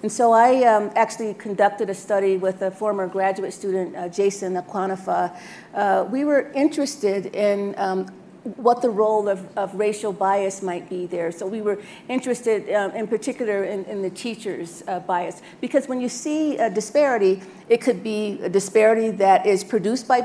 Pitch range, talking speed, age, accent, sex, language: 190-225 Hz, 175 wpm, 50-69, American, female, English